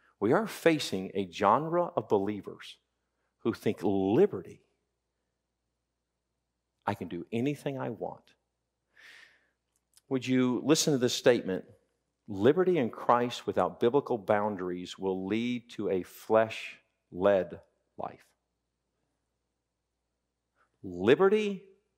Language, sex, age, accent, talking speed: English, male, 50-69, American, 95 wpm